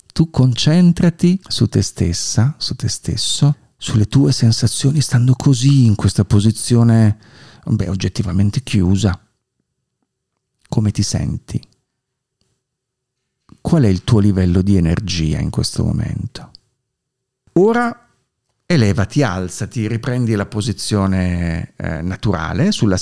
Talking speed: 105 wpm